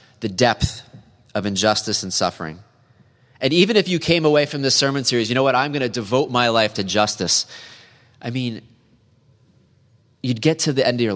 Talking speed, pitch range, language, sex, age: 195 wpm, 100-125 Hz, English, male, 30-49